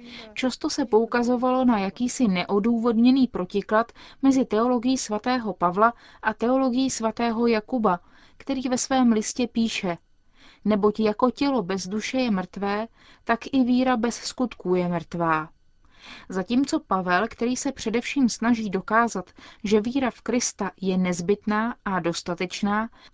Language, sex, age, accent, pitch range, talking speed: Czech, female, 30-49, native, 195-245 Hz, 125 wpm